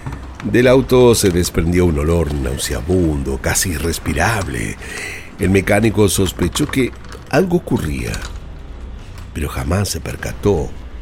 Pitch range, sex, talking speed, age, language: 75-100 Hz, male, 105 wpm, 60-79, Spanish